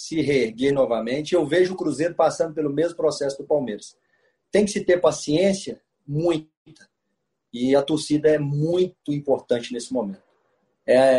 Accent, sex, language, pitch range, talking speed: Brazilian, male, Portuguese, 135-175 Hz, 150 wpm